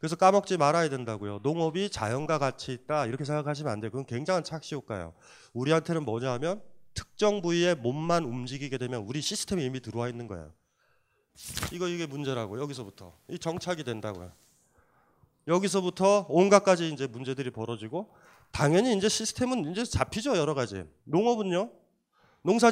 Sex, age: male, 30-49